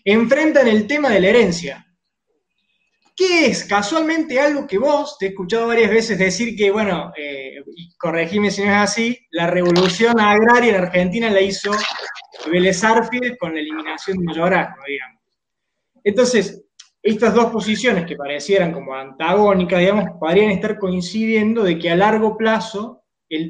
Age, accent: 20-39, Argentinian